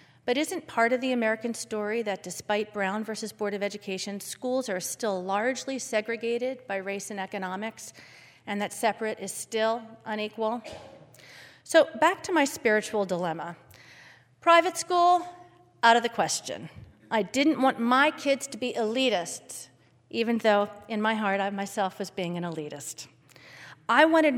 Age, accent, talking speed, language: 40-59, American, 155 wpm, English